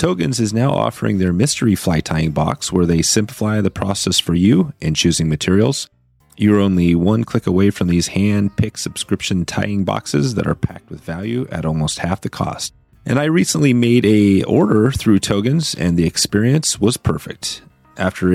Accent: American